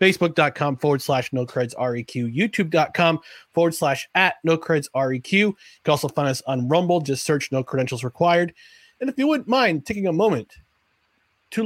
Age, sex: 30-49, male